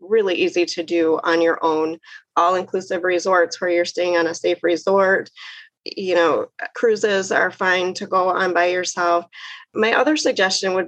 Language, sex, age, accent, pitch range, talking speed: English, female, 30-49, American, 175-220 Hz, 165 wpm